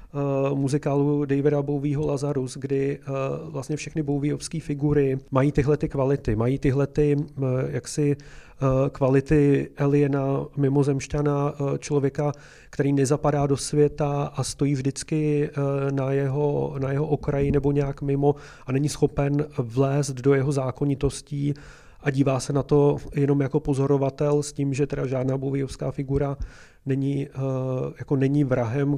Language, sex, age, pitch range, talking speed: Czech, male, 30-49, 135-150 Hz, 120 wpm